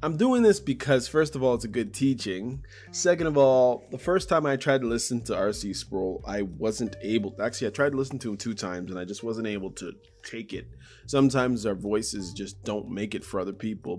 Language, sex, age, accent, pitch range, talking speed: English, male, 20-39, American, 100-130 Hz, 235 wpm